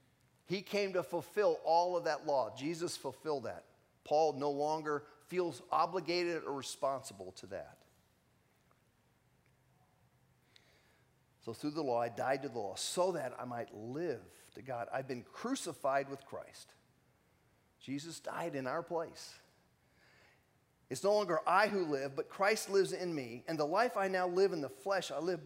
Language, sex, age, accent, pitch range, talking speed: English, male, 40-59, American, 125-170 Hz, 160 wpm